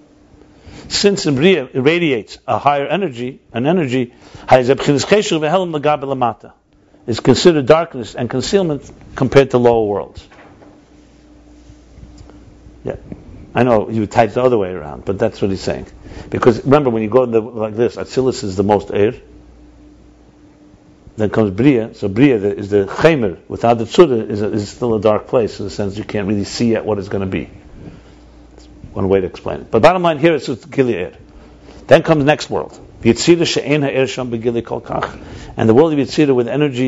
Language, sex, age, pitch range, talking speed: English, male, 60-79, 110-155 Hz, 170 wpm